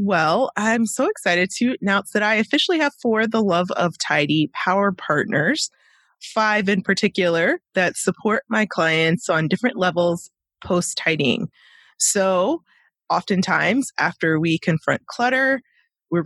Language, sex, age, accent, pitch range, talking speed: English, female, 20-39, American, 160-205 Hz, 130 wpm